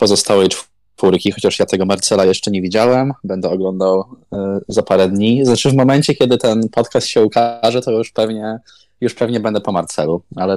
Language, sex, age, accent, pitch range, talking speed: Polish, male, 20-39, native, 95-115 Hz, 180 wpm